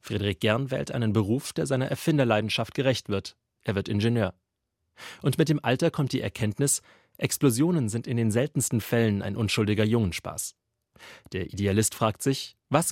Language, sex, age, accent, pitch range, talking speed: German, male, 30-49, German, 100-135 Hz, 160 wpm